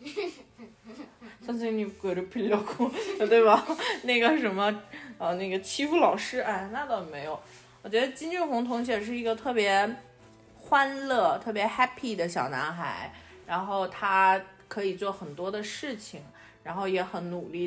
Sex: female